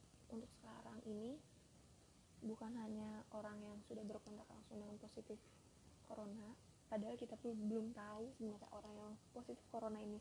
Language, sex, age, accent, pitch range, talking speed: Indonesian, female, 20-39, native, 210-220 Hz, 140 wpm